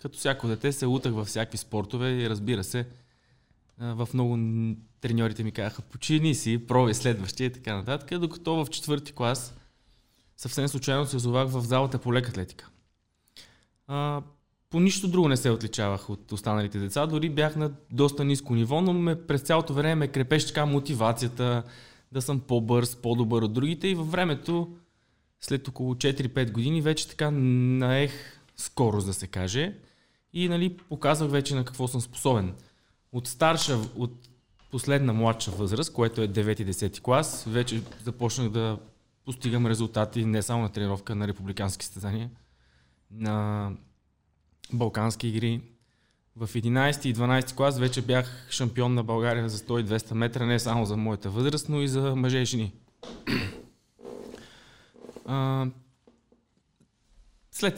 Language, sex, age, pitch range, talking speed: Bulgarian, male, 20-39, 110-140 Hz, 140 wpm